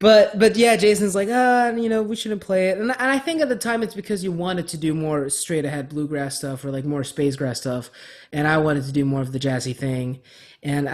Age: 20-39